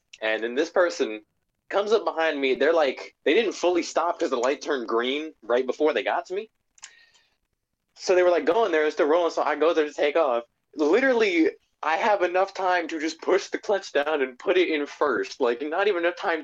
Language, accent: English, American